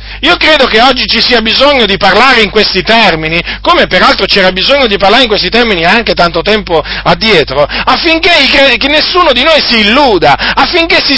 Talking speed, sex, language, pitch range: 180 wpm, male, Italian, 195-295 Hz